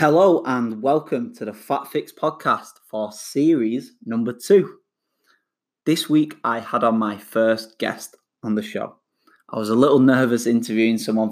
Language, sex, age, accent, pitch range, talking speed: English, male, 20-39, British, 110-130 Hz, 160 wpm